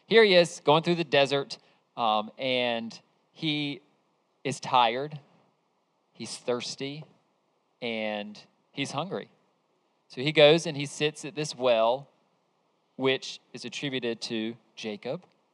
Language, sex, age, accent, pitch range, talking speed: English, male, 40-59, American, 120-155 Hz, 120 wpm